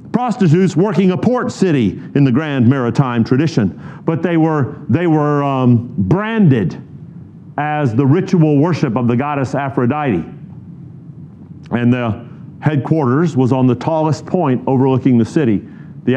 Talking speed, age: 135 wpm, 50-69